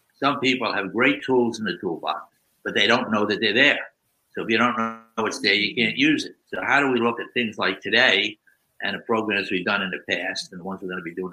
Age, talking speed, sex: 60-79, 270 wpm, male